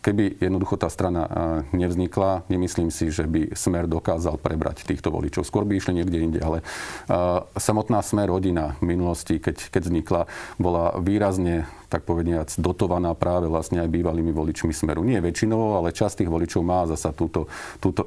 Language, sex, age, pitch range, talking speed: Slovak, male, 40-59, 85-95 Hz, 165 wpm